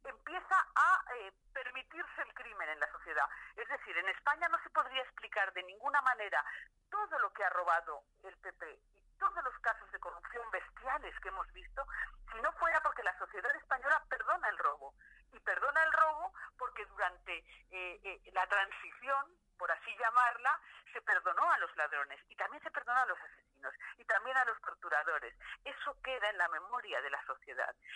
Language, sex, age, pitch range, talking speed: Spanish, female, 50-69, 225-305 Hz, 180 wpm